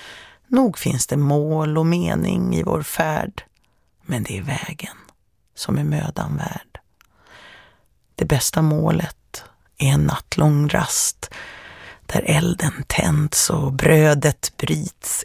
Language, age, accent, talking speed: Swedish, 30-49, native, 120 wpm